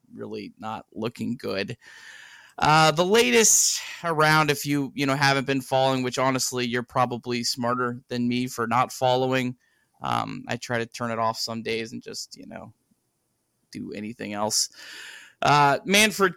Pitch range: 120-140 Hz